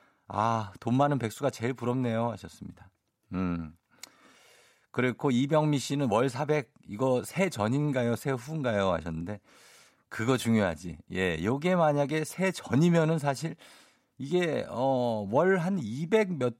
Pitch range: 105-155 Hz